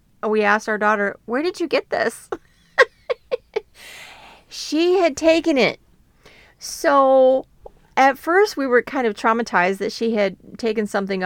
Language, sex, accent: English, female, American